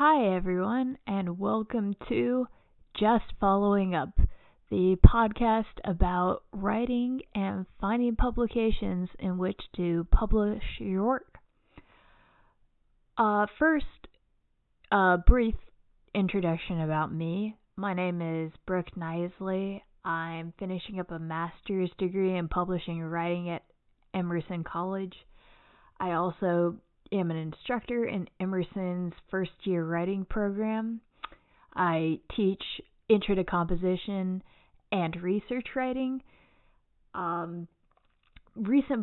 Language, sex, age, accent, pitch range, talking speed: English, female, 20-39, American, 175-210 Hz, 105 wpm